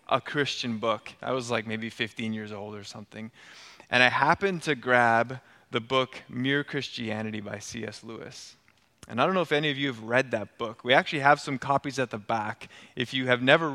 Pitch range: 115-140 Hz